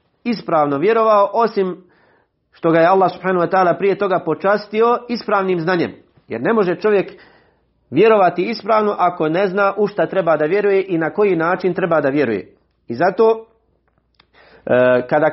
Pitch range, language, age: 145-195 Hz, English, 40-59